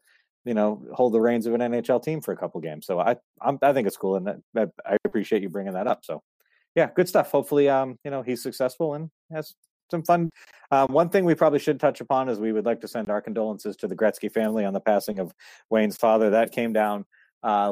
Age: 40-59